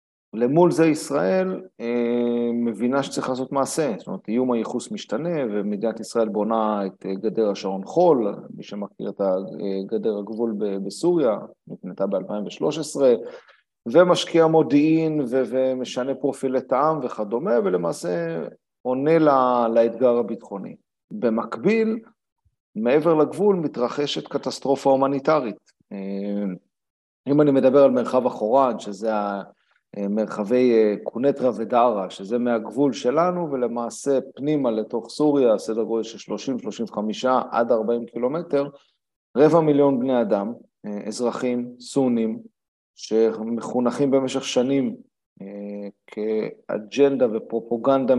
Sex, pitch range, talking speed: male, 110-140 Hz, 100 wpm